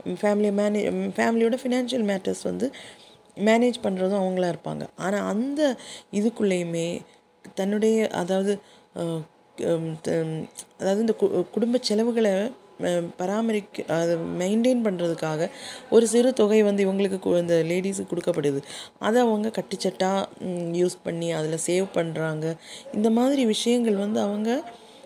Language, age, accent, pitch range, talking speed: Tamil, 20-39, native, 170-215 Hz, 105 wpm